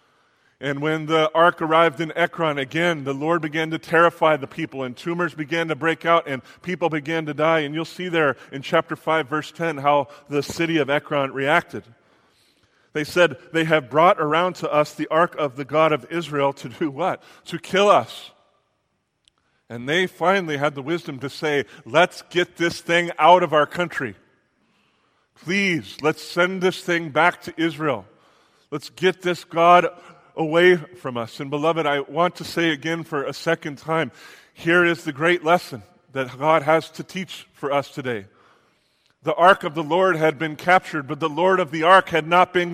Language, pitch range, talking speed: English, 150-175 Hz, 190 wpm